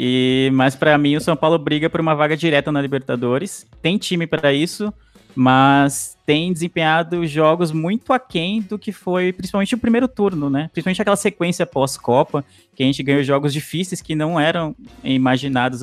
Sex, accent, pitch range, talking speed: male, Brazilian, 135-180 Hz, 175 wpm